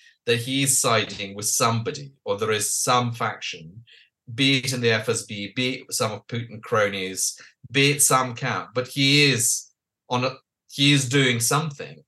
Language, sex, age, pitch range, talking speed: English, male, 30-49, 120-150 Hz, 165 wpm